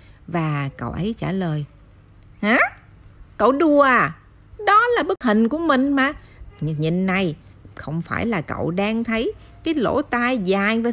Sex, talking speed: female, 155 wpm